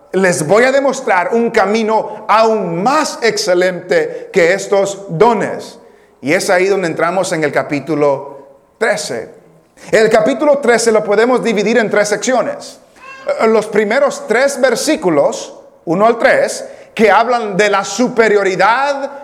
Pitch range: 200-255 Hz